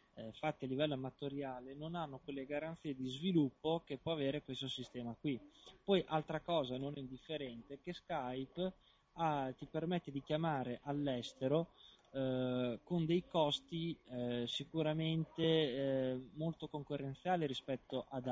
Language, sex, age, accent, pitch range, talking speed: Italian, male, 20-39, native, 130-160 Hz, 135 wpm